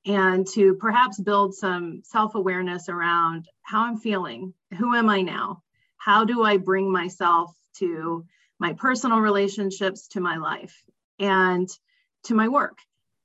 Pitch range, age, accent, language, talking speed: 185-220 Hz, 30-49, American, English, 135 wpm